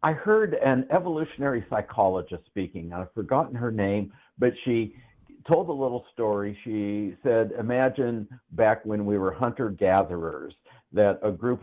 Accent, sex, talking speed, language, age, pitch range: American, male, 140 wpm, English, 60-79, 100-125 Hz